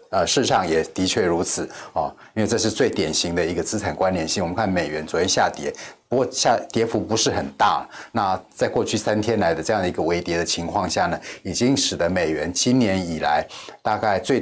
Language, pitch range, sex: Chinese, 90-110 Hz, male